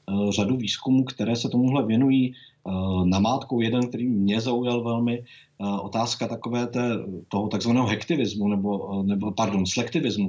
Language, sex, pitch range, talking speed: Czech, male, 100-125 Hz, 140 wpm